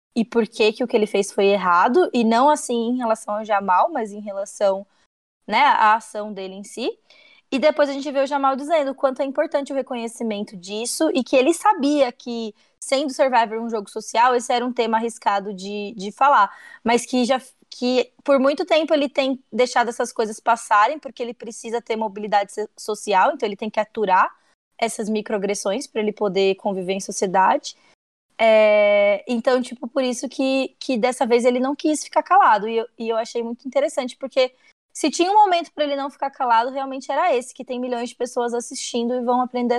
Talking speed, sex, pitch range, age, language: 205 wpm, female, 220-275 Hz, 20-39, Portuguese